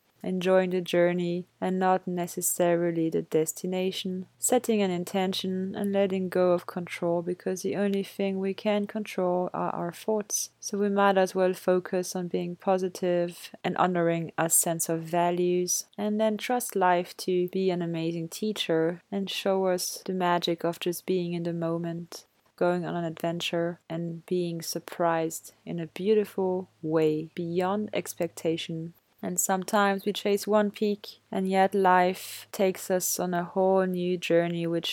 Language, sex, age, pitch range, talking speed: English, female, 20-39, 170-190 Hz, 155 wpm